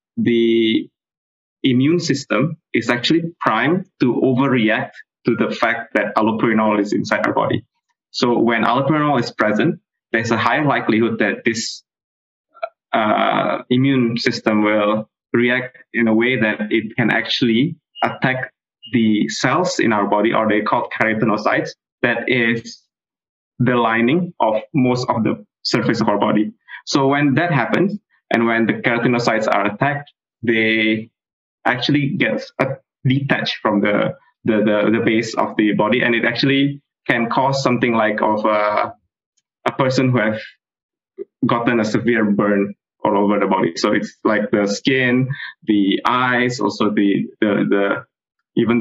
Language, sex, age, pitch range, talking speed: English, male, 20-39, 110-140 Hz, 145 wpm